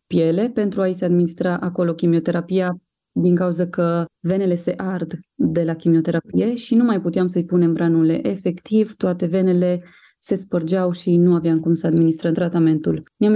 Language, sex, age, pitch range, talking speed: Romanian, female, 20-39, 165-195 Hz, 160 wpm